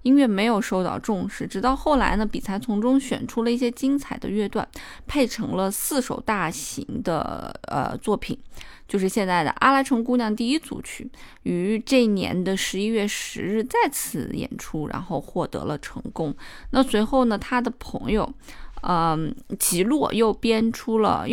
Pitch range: 200-250 Hz